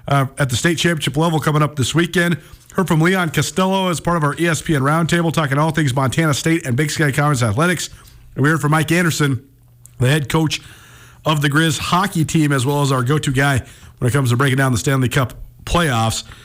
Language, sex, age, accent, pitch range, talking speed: English, male, 50-69, American, 140-175 Hz, 220 wpm